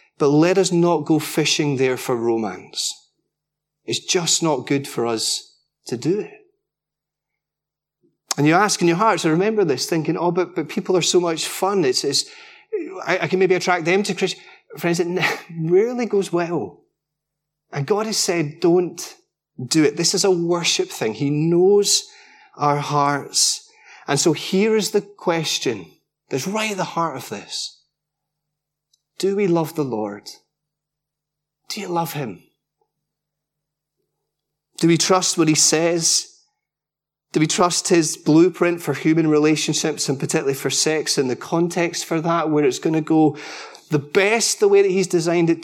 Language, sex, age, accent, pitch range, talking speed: English, male, 30-49, British, 150-190 Hz, 165 wpm